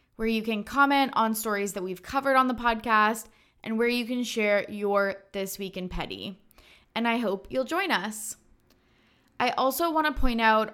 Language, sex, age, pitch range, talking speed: English, female, 20-39, 195-245 Hz, 190 wpm